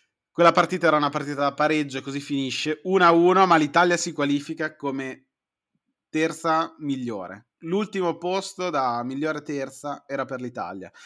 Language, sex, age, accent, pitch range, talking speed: Italian, male, 30-49, native, 125-160 Hz, 140 wpm